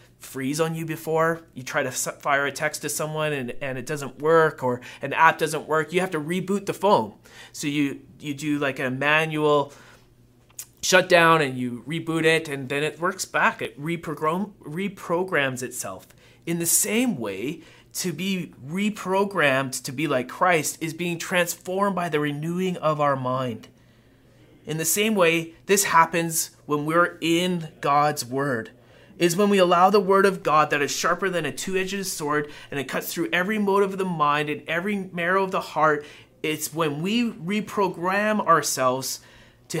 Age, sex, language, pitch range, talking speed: 30-49, male, English, 135-175 Hz, 175 wpm